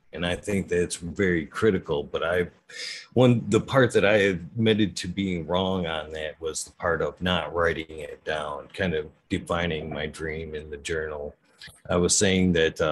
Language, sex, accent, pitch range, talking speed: English, male, American, 80-100 Hz, 180 wpm